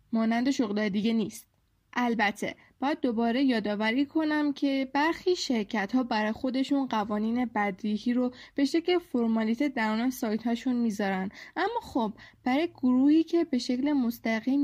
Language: Persian